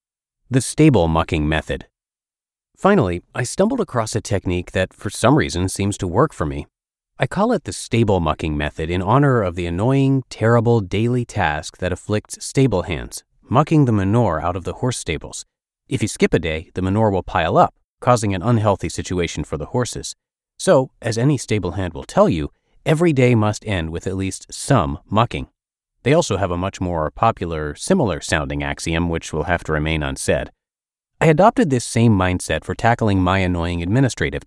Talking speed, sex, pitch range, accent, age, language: 185 wpm, male, 90-125 Hz, American, 30-49, English